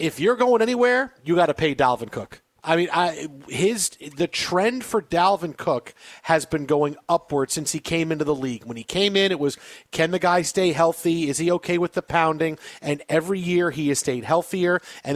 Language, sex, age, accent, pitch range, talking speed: English, male, 40-59, American, 155-205 Hz, 215 wpm